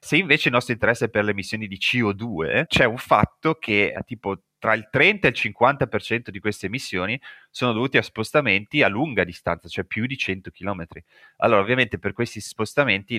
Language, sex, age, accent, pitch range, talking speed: Italian, male, 30-49, native, 90-110 Hz, 190 wpm